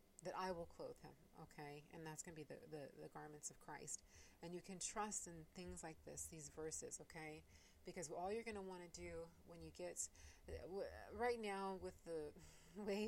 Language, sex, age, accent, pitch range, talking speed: English, female, 30-49, American, 145-175 Hz, 195 wpm